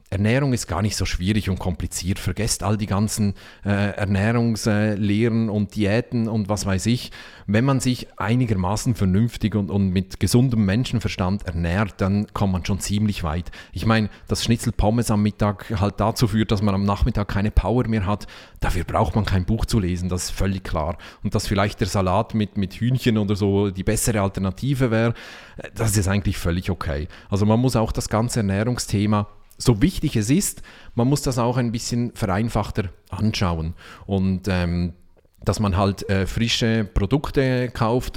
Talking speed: 180 wpm